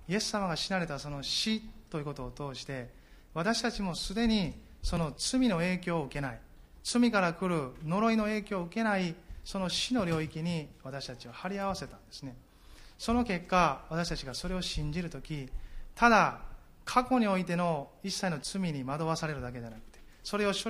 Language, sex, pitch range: Japanese, male, 140-205 Hz